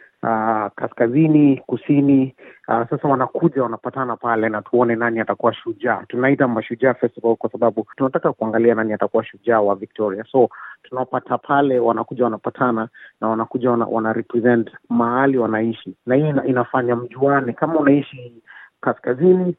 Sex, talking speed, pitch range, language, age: male, 140 wpm, 115-140 Hz, Swahili, 30-49